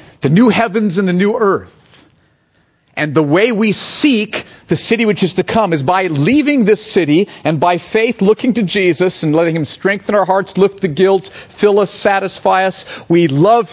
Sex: male